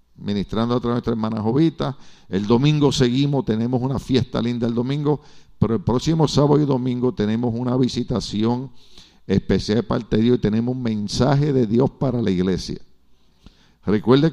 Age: 50-69